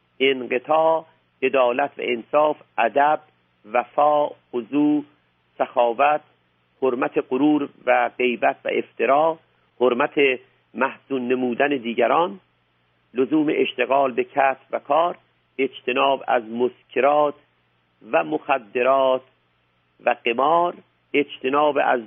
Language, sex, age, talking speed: Persian, male, 50-69, 90 wpm